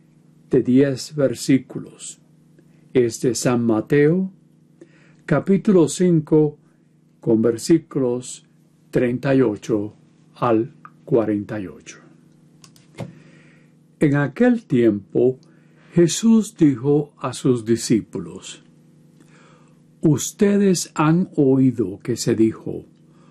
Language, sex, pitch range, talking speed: Spanish, male, 120-160 Hz, 70 wpm